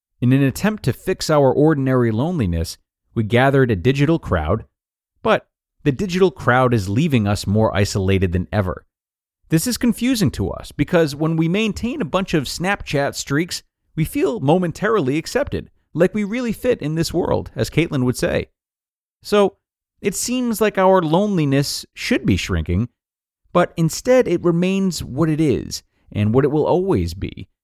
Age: 30-49